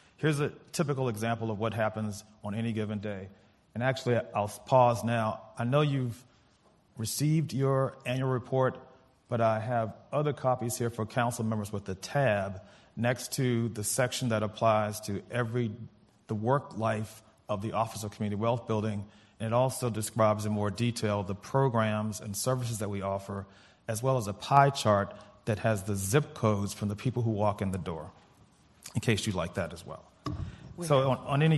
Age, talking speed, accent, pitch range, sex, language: 40-59, 185 wpm, American, 105-125 Hz, male, English